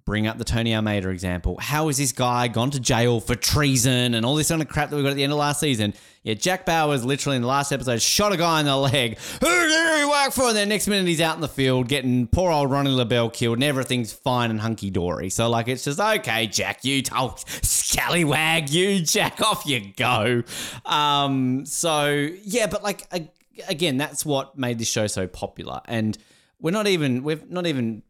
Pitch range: 105-150 Hz